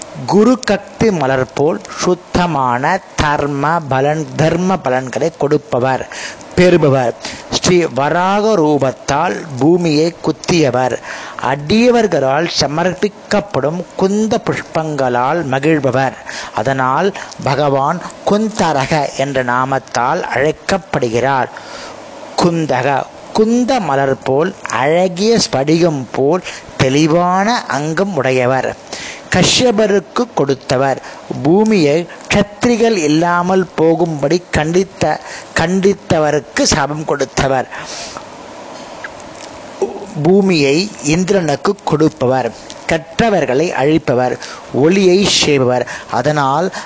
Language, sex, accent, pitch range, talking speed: Tamil, male, native, 135-195 Hz, 65 wpm